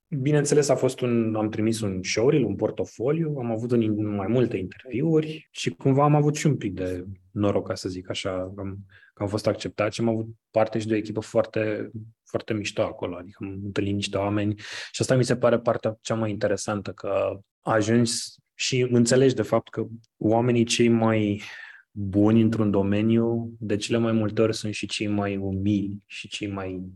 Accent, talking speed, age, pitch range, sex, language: native, 190 wpm, 20-39, 100-115 Hz, male, Romanian